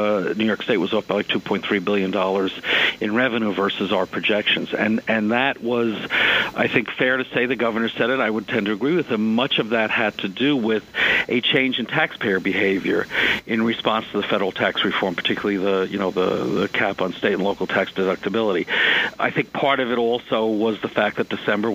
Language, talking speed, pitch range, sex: English, 215 wpm, 110-130 Hz, male